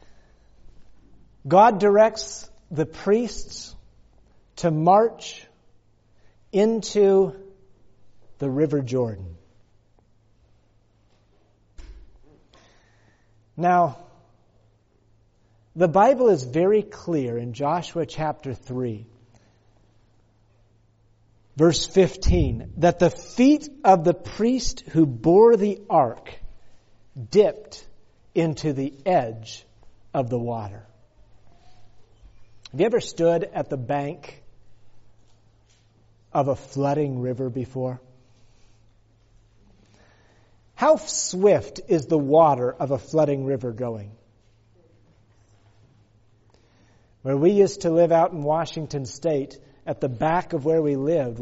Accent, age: American, 50-69